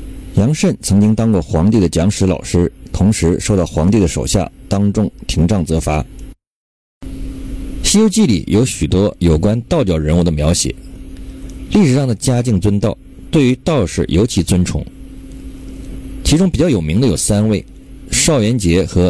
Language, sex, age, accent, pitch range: Chinese, male, 50-69, native, 85-120 Hz